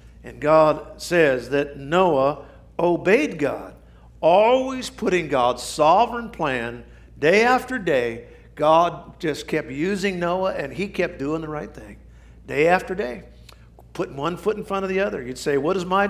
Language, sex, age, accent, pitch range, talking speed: English, male, 50-69, American, 120-175 Hz, 160 wpm